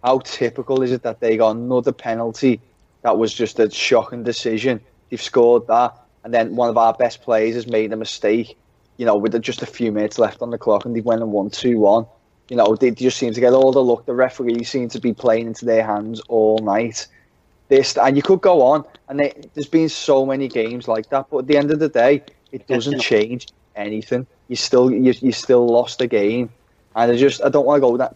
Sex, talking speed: male, 240 wpm